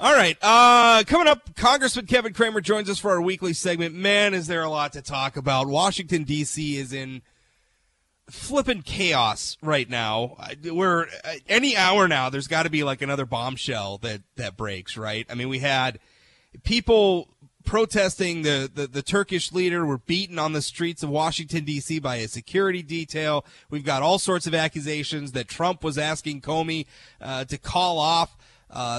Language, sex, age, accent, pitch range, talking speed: English, male, 30-49, American, 140-195 Hz, 175 wpm